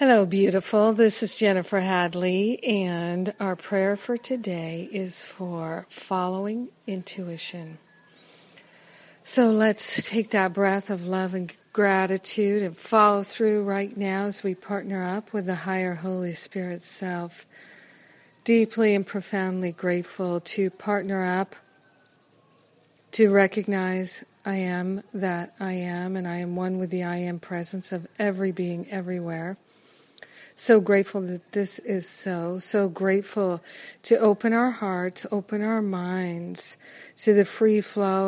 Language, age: English, 50-69